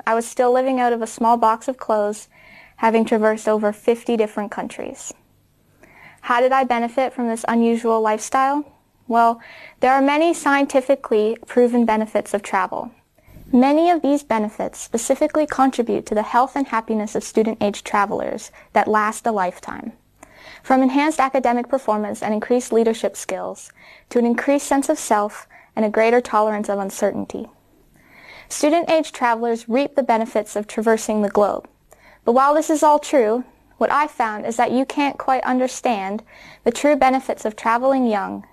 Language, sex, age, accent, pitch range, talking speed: English, female, 10-29, American, 215-265 Hz, 160 wpm